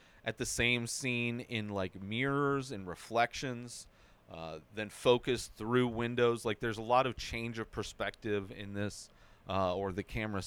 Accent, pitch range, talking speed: American, 100-125 Hz, 160 wpm